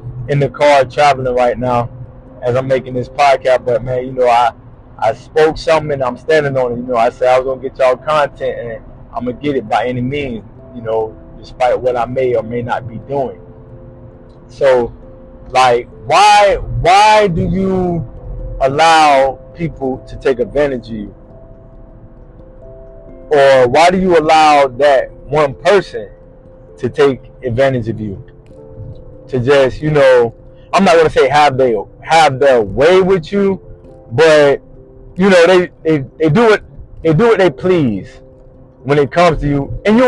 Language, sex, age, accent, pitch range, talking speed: English, male, 20-39, American, 125-165 Hz, 170 wpm